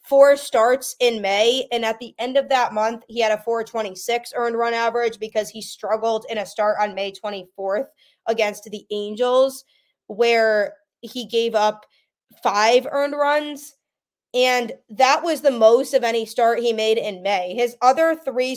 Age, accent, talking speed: 20-39, American, 170 wpm